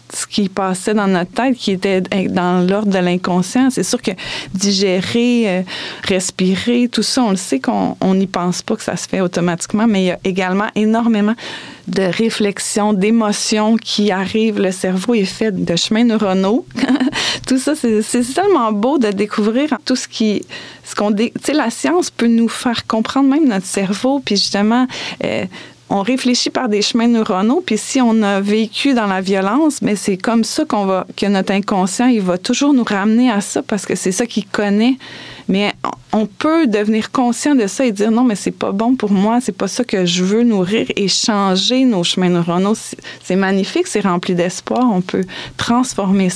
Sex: female